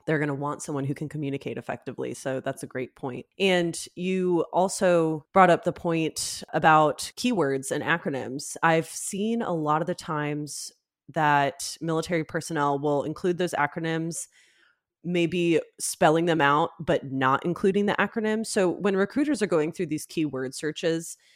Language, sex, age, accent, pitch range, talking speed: English, female, 20-39, American, 140-180 Hz, 160 wpm